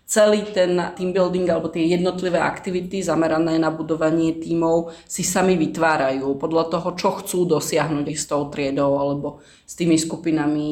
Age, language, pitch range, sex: 30-49, Slovak, 165-195 Hz, female